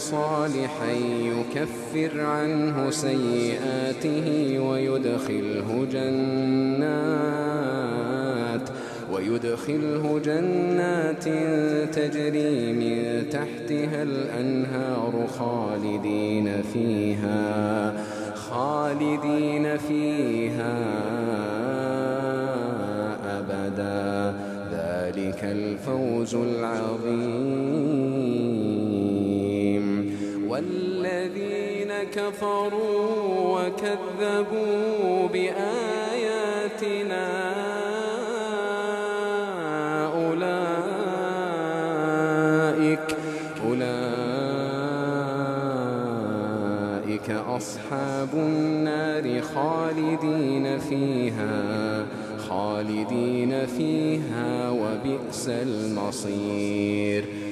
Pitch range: 110-155 Hz